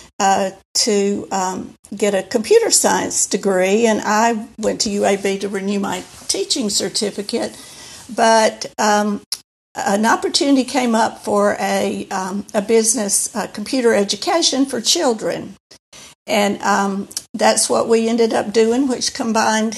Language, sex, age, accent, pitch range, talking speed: English, female, 60-79, American, 205-240 Hz, 135 wpm